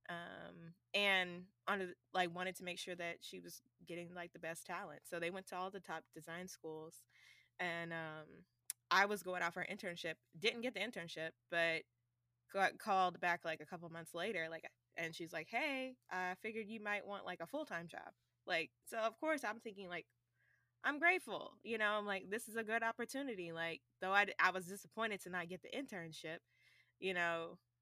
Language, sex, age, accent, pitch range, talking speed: English, female, 20-39, American, 160-205 Hz, 200 wpm